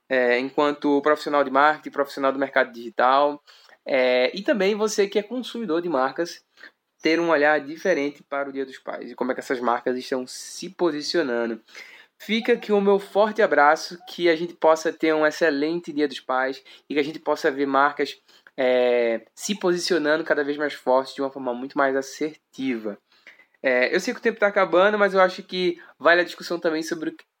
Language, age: Portuguese, 20-39